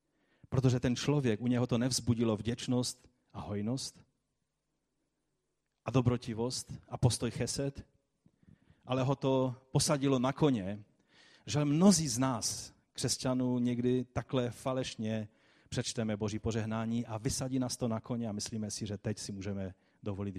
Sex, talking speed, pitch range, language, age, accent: male, 135 wpm, 110-145 Hz, Czech, 30-49, native